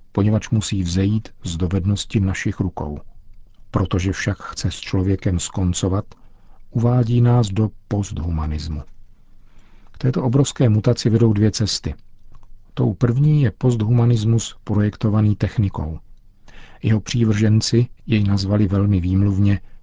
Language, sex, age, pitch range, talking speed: Czech, male, 50-69, 95-110 Hz, 110 wpm